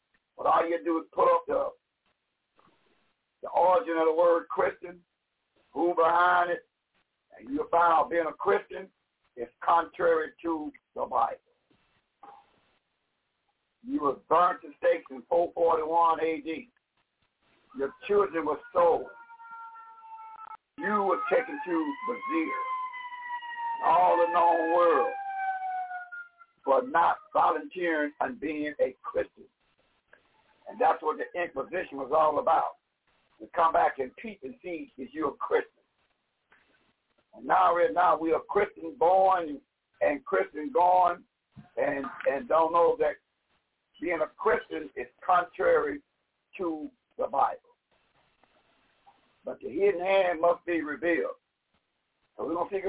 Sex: male